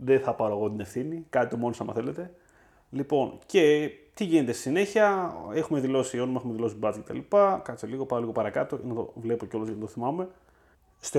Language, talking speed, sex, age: Greek, 205 wpm, male, 30-49